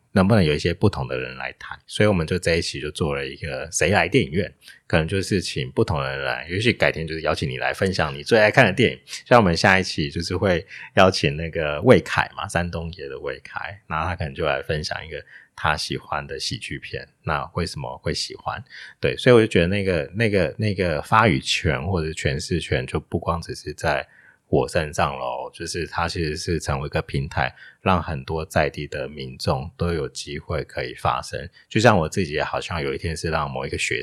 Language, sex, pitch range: Chinese, male, 80-95 Hz